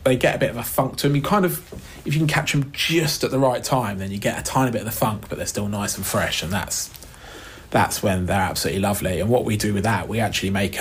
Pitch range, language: 95-115 Hz, English